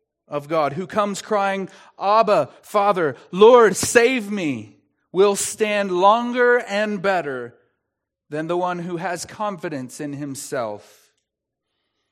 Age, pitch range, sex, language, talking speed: 30-49, 160-220 Hz, male, English, 115 wpm